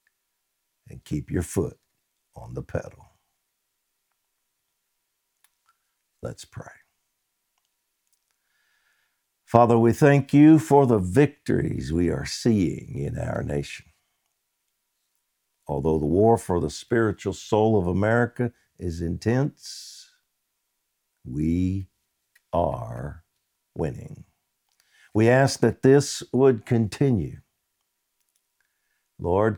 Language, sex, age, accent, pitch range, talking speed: English, male, 60-79, American, 90-125 Hz, 85 wpm